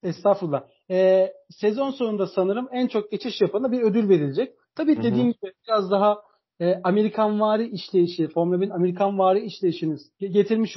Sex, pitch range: male, 190-235 Hz